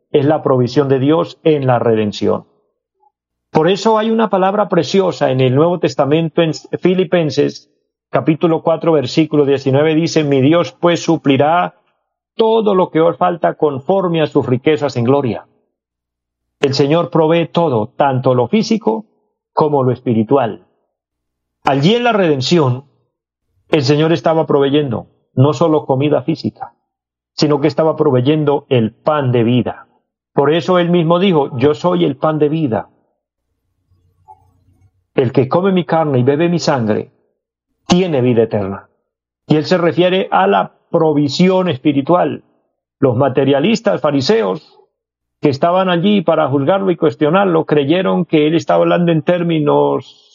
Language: Spanish